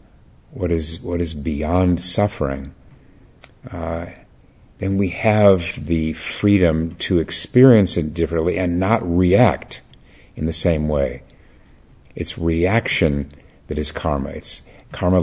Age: 50-69